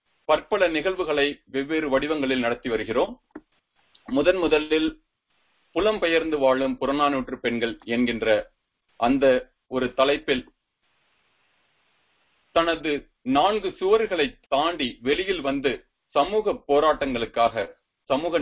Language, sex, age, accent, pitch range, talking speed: Tamil, male, 40-59, native, 125-205 Hz, 75 wpm